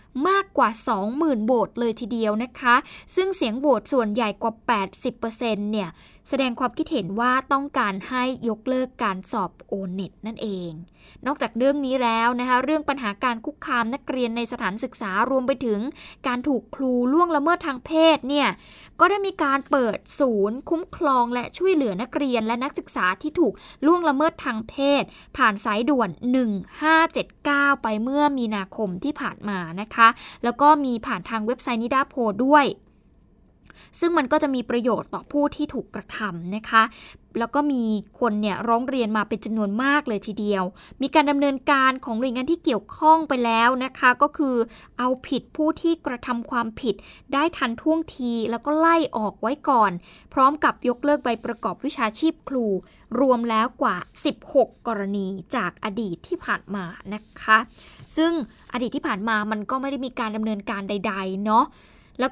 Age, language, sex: 10-29, Thai, female